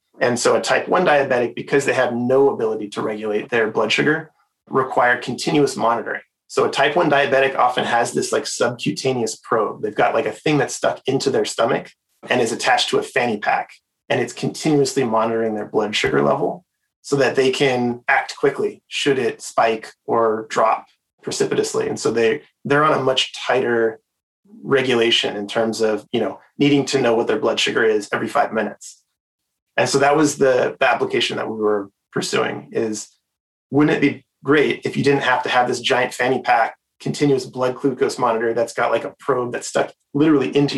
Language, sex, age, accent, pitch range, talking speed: English, male, 30-49, American, 115-145 Hz, 195 wpm